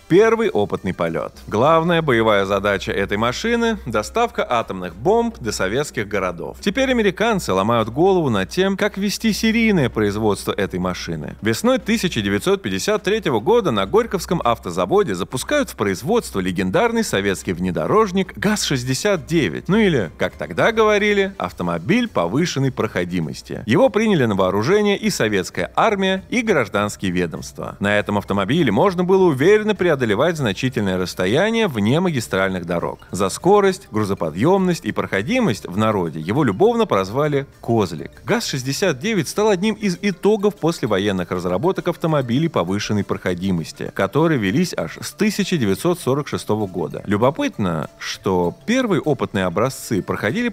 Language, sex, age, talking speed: Russian, male, 30-49, 120 wpm